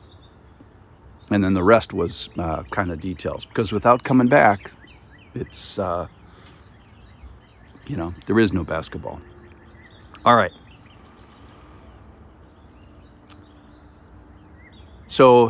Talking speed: 90 wpm